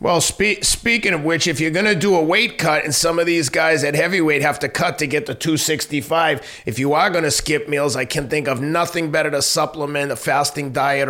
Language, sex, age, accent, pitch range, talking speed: English, male, 30-49, American, 135-155 Hz, 240 wpm